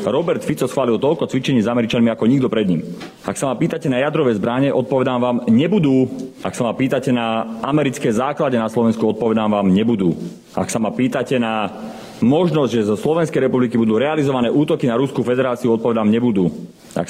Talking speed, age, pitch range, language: 185 wpm, 30-49, 110-130 Hz, Slovak